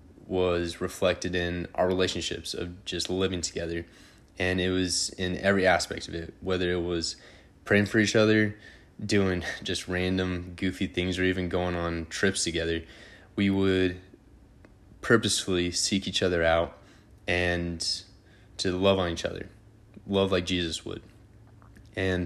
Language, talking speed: English, 145 wpm